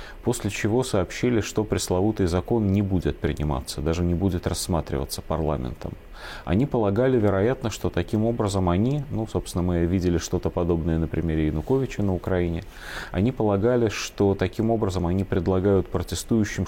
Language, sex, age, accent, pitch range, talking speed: Russian, male, 30-49, native, 85-110 Hz, 145 wpm